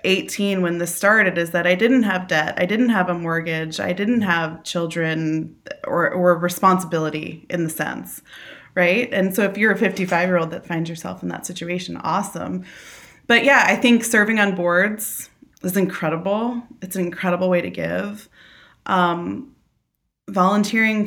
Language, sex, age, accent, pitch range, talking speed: English, female, 20-39, American, 170-210 Hz, 160 wpm